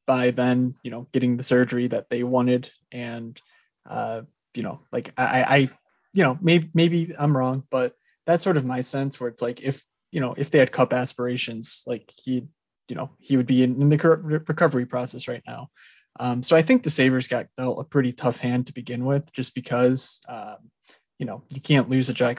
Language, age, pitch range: English, 20-39, 125-145 Hz